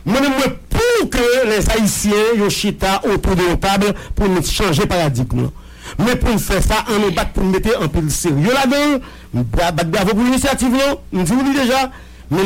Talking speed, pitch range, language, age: 200 wpm, 165-225 Hz, English, 50-69